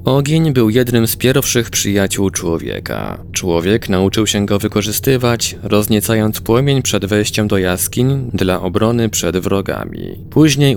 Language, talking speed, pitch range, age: Polish, 130 wpm, 90-115 Hz, 20-39